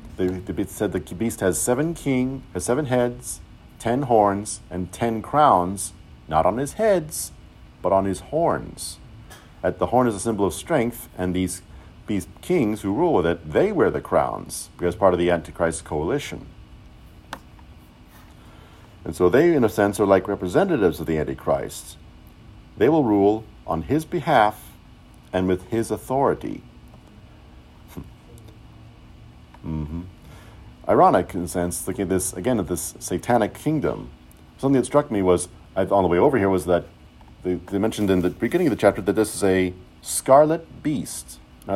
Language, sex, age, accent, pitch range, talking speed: English, male, 50-69, American, 85-115 Hz, 160 wpm